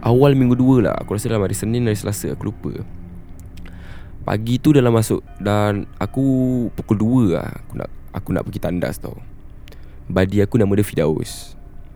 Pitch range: 95-125 Hz